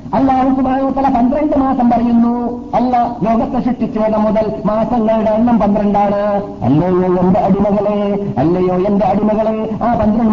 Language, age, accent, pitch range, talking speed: Malayalam, 50-69, native, 155-235 Hz, 115 wpm